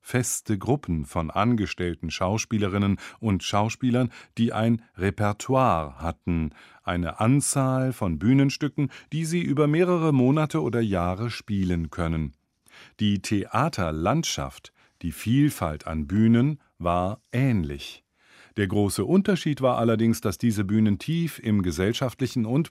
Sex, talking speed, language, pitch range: male, 115 wpm, German, 90-130 Hz